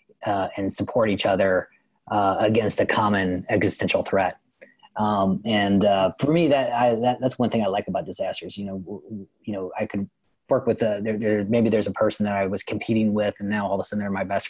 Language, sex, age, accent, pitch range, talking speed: English, male, 20-39, American, 95-115 Hz, 230 wpm